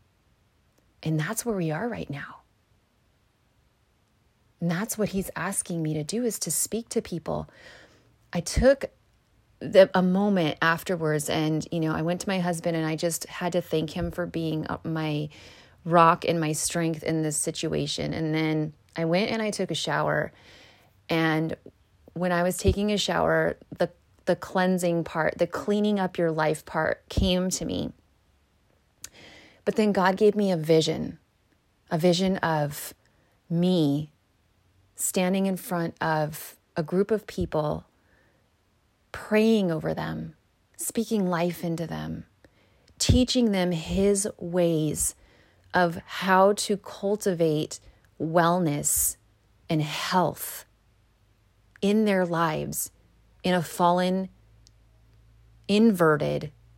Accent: American